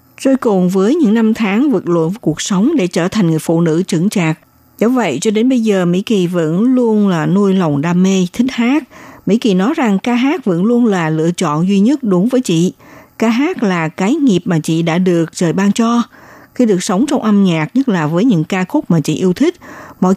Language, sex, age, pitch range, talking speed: Vietnamese, female, 60-79, 175-235 Hz, 240 wpm